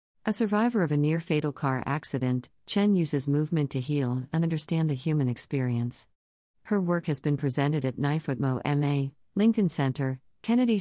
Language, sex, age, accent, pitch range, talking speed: English, female, 50-69, American, 125-155 Hz, 155 wpm